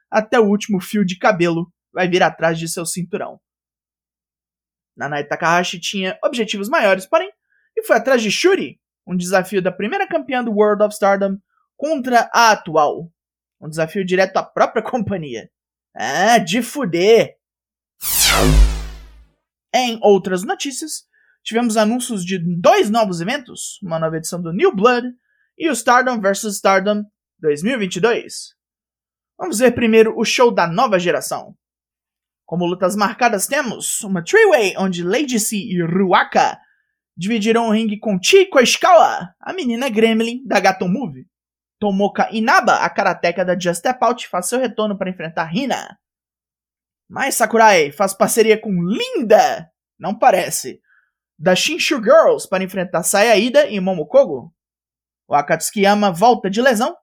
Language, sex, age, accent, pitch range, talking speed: Portuguese, male, 20-39, Brazilian, 180-250 Hz, 140 wpm